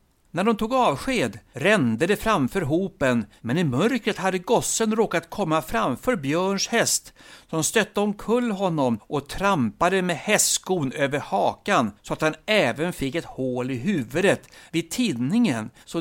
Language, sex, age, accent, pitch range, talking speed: Swedish, male, 60-79, native, 135-215 Hz, 150 wpm